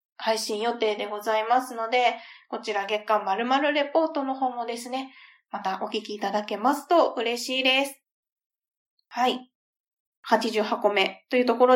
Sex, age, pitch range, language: female, 20-39, 225-290 Hz, Japanese